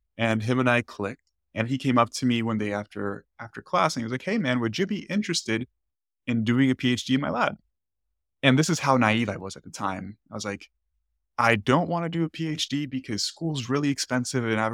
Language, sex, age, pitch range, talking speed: English, male, 20-39, 105-130 Hz, 240 wpm